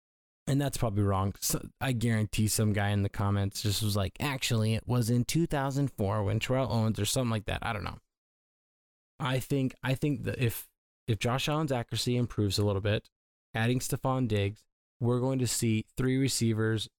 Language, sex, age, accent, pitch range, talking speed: English, male, 10-29, American, 100-125 Hz, 185 wpm